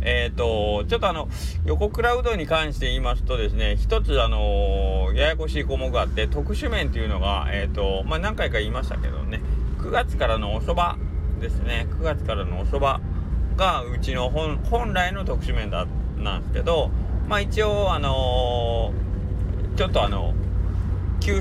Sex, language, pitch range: male, Japanese, 70-85 Hz